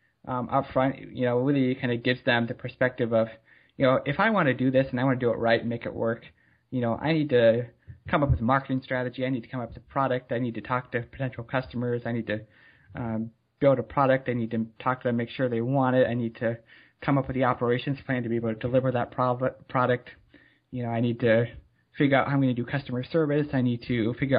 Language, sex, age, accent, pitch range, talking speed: English, male, 20-39, American, 120-135 Hz, 270 wpm